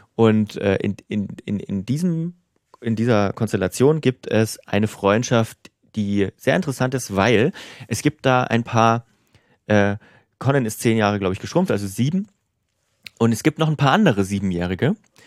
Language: German